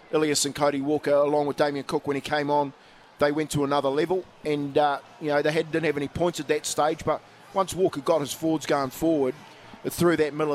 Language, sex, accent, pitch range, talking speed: English, male, Australian, 140-155 Hz, 240 wpm